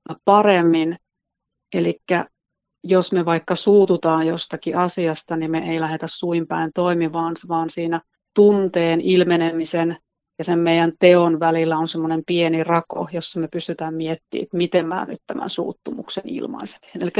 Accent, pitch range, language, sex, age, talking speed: native, 165-205 Hz, Finnish, female, 30-49, 135 wpm